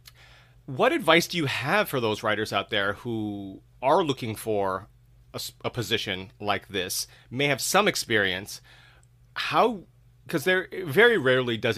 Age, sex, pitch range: 30-49, male, 105-130 Hz